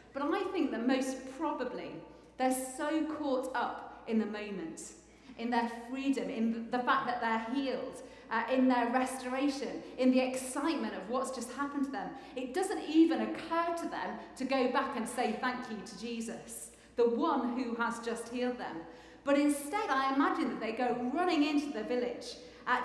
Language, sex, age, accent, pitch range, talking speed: English, female, 40-59, British, 245-290 Hz, 180 wpm